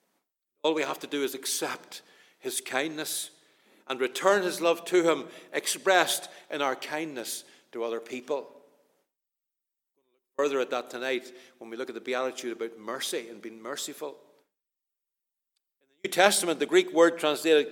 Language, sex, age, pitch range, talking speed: English, male, 60-79, 140-195 Hz, 160 wpm